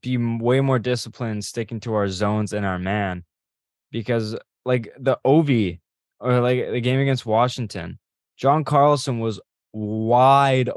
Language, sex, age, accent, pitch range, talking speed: English, male, 20-39, American, 105-125 Hz, 145 wpm